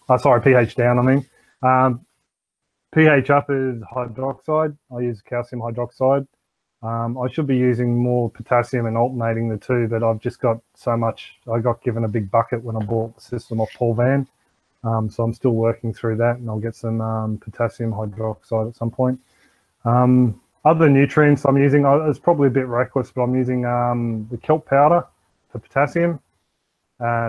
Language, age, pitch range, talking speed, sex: English, 20-39, 110-125 Hz, 180 wpm, male